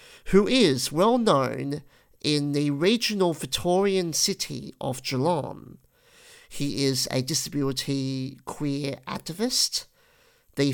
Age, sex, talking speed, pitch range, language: 50-69, male, 95 wpm, 135-175 Hz, English